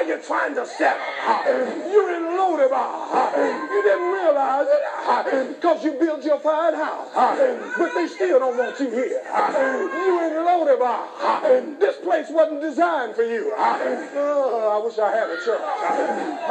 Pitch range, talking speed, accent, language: 285-355 Hz, 145 wpm, American, English